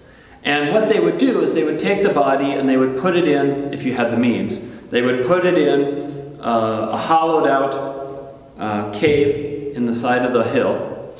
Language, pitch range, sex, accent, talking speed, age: English, 120-155 Hz, male, American, 210 wpm, 40-59